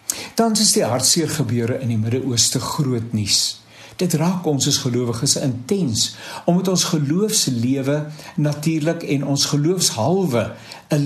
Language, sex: English, male